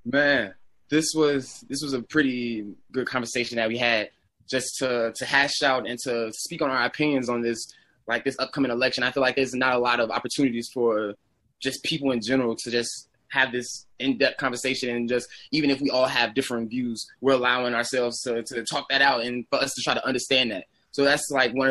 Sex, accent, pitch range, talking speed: male, American, 120-140 Hz, 215 wpm